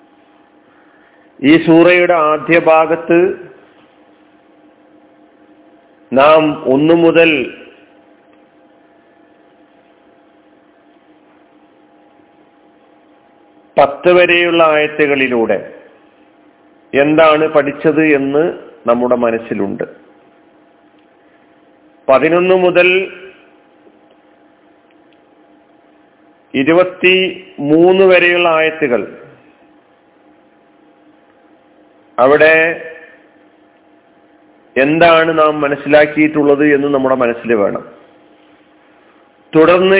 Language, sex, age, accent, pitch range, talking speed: Malayalam, male, 40-59, native, 140-180 Hz, 45 wpm